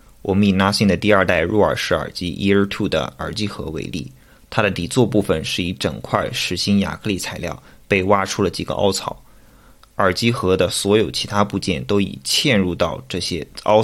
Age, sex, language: 20-39, male, Chinese